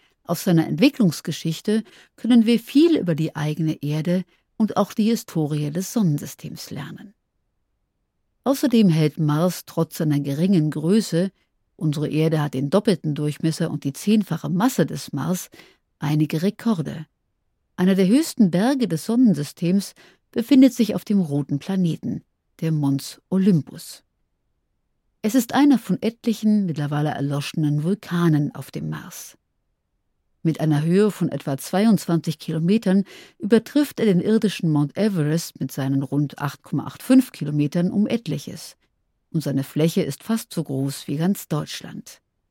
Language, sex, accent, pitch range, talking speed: German, female, German, 150-210 Hz, 135 wpm